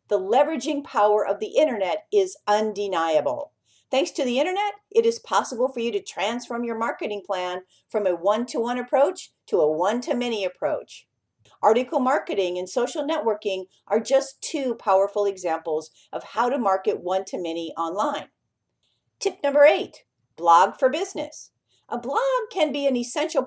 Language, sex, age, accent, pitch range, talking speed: English, female, 50-69, American, 200-300 Hz, 150 wpm